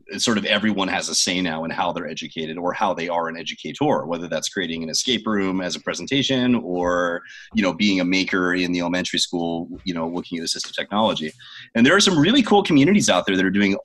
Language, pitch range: English, 90-115 Hz